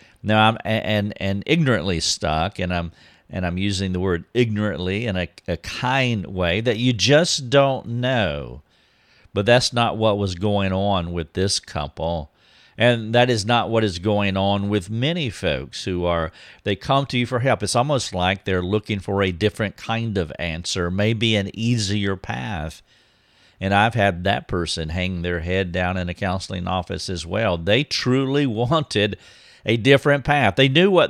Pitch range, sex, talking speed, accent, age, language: 90-120 Hz, male, 180 wpm, American, 50-69, English